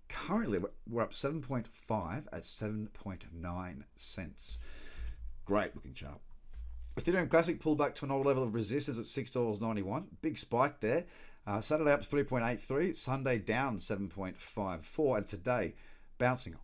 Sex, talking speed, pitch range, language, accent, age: male, 125 wpm, 95-130 Hz, English, Australian, 40-59